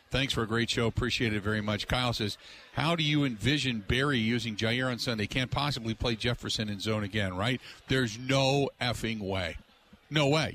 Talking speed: 195 wpm